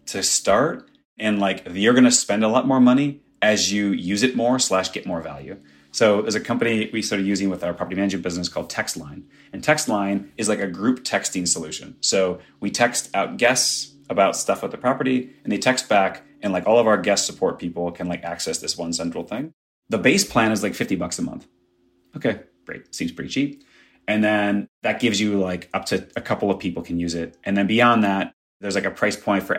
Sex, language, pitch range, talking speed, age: male, English, 90-115 Hz, 225 wpm, 30-49